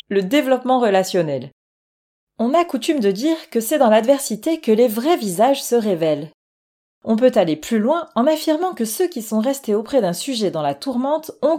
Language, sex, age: French, female, 30-49